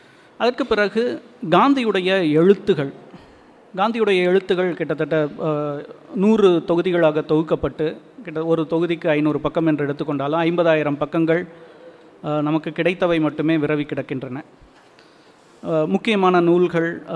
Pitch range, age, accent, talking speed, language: 150-185 Hz, 30-49, native, 90 wpm, Tamil